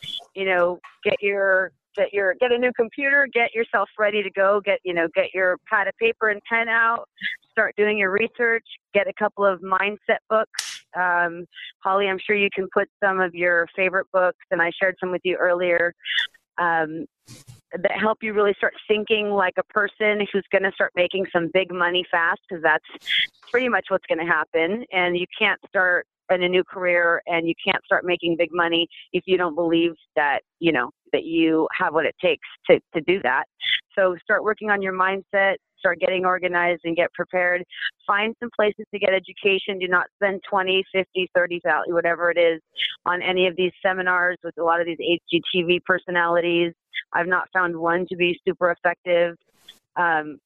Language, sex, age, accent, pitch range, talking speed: English, female, 30-49, American, 175-200 Hz, 195 wpm